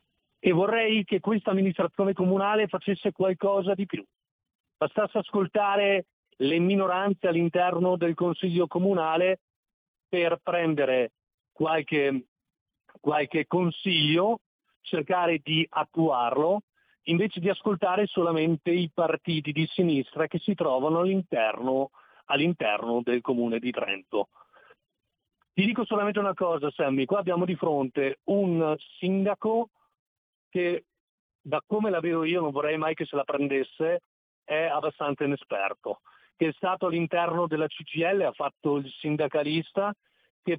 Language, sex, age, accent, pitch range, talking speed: Italian, male, 40-59, native, 155-200 Hz, 120 wpm